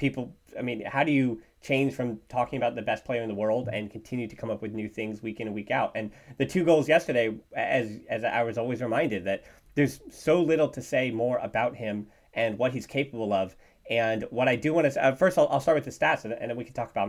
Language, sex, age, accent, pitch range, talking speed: English, male, 30-49, American, 110-140 Hz, 265 wpm